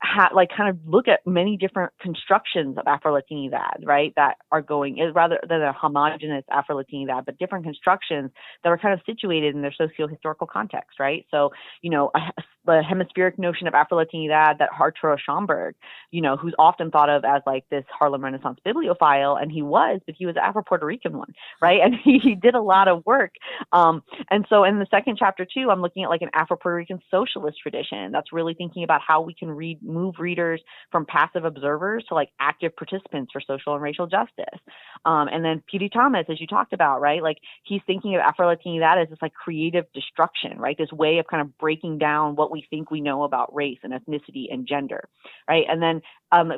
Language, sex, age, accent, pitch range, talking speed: English, female, 30-49, American, 145-180 Hz, 210 wpm